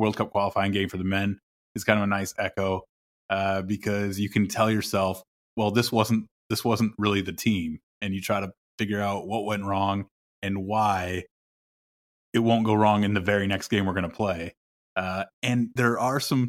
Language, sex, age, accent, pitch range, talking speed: English, male, 20-39, American, 95-115 Hz, 205 wpm